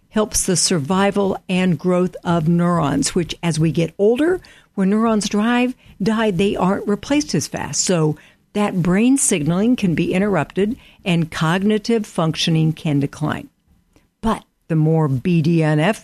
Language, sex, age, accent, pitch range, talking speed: English, female, 60-79, American, 160-220 Hz, 140 wpm